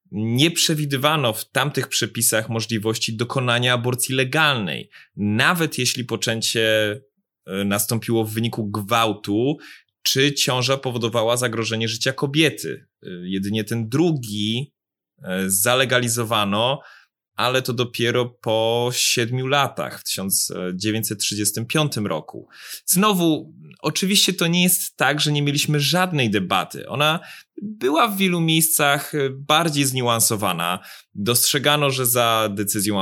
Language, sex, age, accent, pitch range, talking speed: Polish, male, 20-39, native, 110-145 Hz, 105 wpm